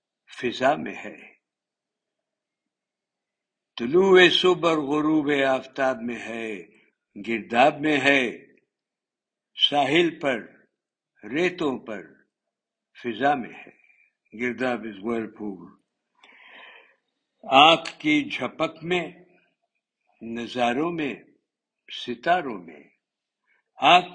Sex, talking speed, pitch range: male, 80 wpm, 125-170 Hz